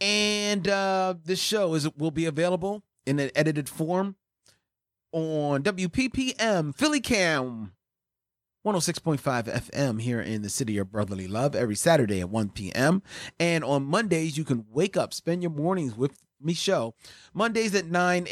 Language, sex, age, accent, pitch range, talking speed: English, male, 30-49, American, 125-180 Hz, 165 wpm